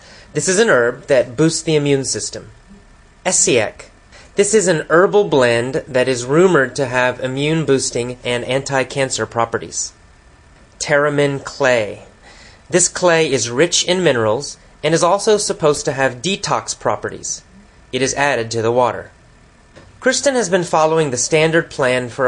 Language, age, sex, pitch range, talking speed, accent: English, 30-49, male, 120-165 Hz, 150 wpm, American